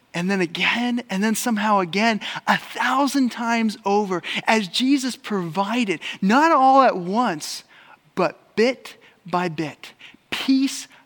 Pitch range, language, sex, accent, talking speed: 180-235 Hz, English, male, American, 125 wpm